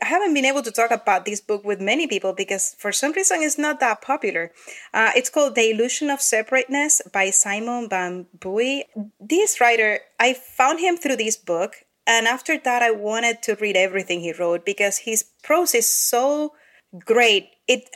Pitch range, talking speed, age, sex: 200-260 Hz, 185 wpm, 30-49, female